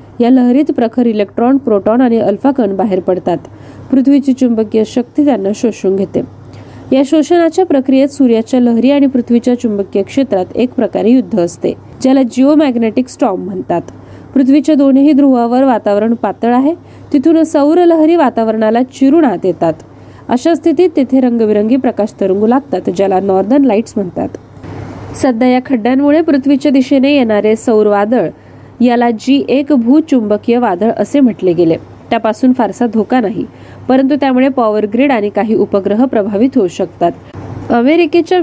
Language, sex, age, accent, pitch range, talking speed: Marathi, female, 20-39, native, 210-275 Hz, 100 wpm